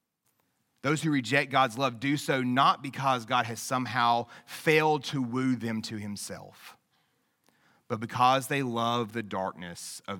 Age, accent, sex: 30-49, American, male